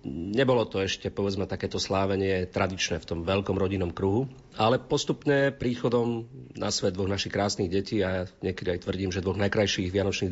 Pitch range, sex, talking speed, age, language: 90-105 Hz, male, 175 wpm, 40-59, Slovak